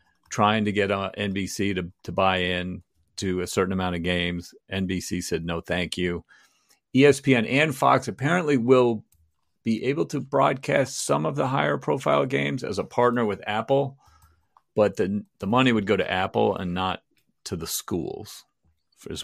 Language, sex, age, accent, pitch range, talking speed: English, male, 40-59, American, 90-115 Hz, 165 wpm